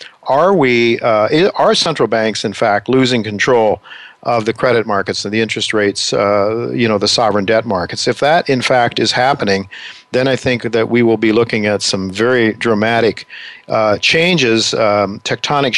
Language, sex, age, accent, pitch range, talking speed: English, male, 50-69, American, 105-125 Hz, 180 wpm